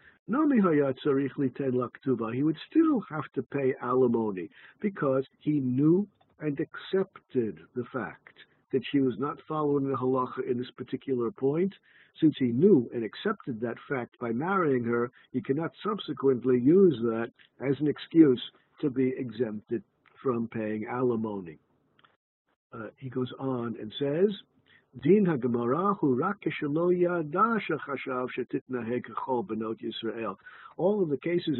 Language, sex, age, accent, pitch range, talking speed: English, male, 50-69, American, 125-165 Hz, 110 wpm